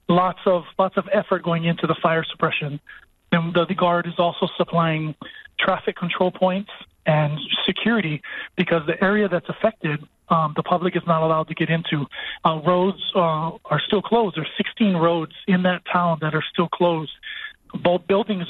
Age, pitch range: 40-59, 160-180 Hz